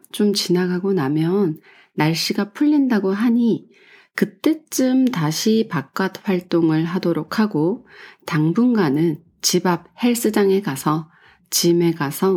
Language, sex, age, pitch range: Korean, female, 30-49, 160-215 Hz